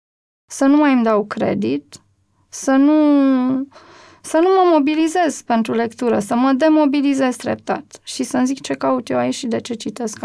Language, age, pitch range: Romanian, 20-39, 230-280 Hz